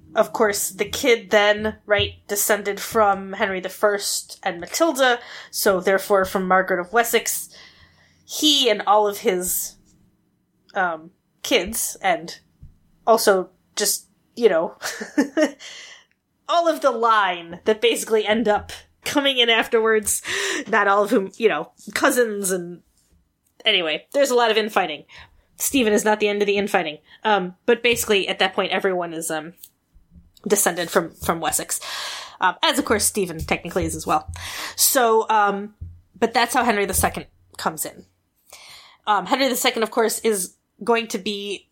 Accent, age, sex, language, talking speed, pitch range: American, 20-39, female, English, 150 wpm, 200-250 Hz